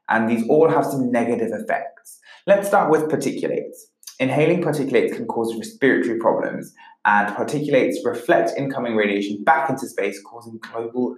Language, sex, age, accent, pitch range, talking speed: English, male, 20-39, British, 115-155 Hz, 145 wpm